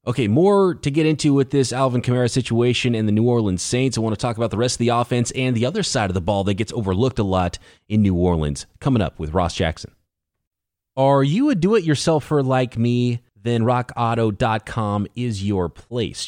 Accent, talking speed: American, 205 wpm